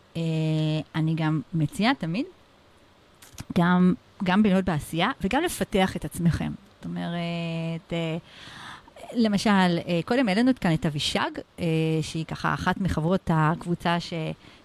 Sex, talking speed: female, 125 wpm